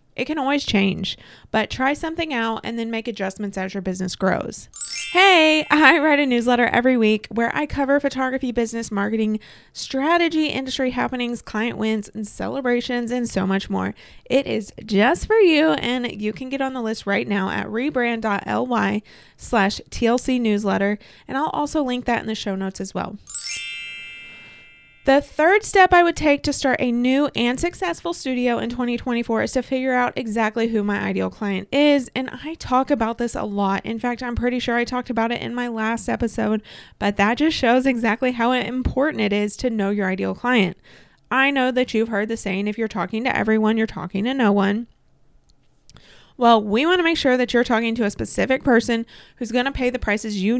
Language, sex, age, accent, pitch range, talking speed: English, female, 20-39, American, 210-260 Hz, 195 wpm